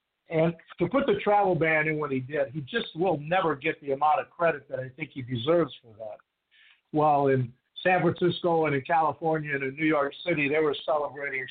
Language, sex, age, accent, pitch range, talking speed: English, male, 60-79, American, 145-180 Hz, 215 wpm